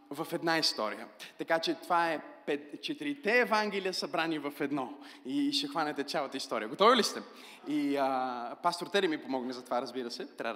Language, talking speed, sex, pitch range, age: Bulgarian, 175 wpm, male, 120-155 Hz, 20-39